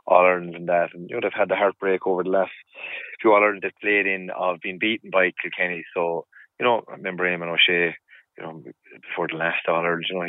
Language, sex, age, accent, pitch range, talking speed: English, male, 30-49, Irish, 85-95 Hz, 220 wpm